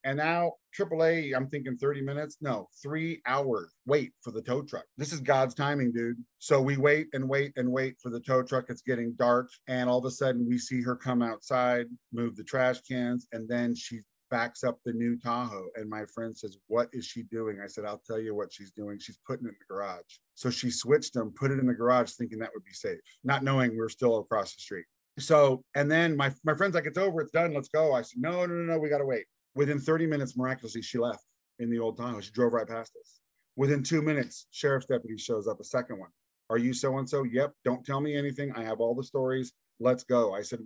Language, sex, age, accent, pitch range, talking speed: English, male, 40-59, American, 120-145 Hz, 240 wpm